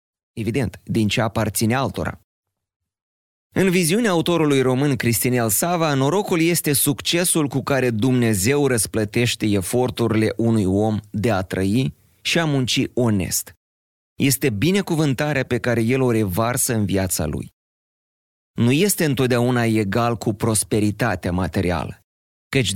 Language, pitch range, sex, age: Romanian, 100-140 Hz, male, 30-49